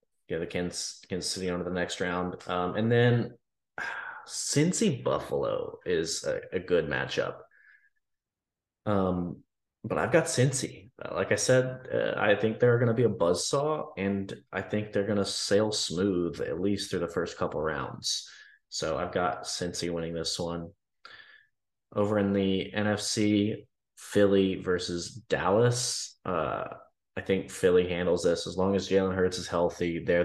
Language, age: English, 20-39